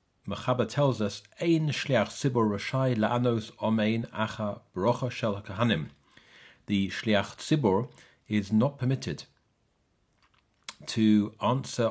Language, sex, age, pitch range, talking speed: English, male, 50-69, 100-130 Hz, 100 wpm